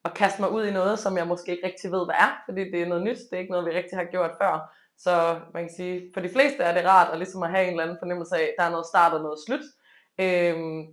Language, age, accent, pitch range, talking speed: Danish, 20-39, native, 165-200 Hz, 305 wpm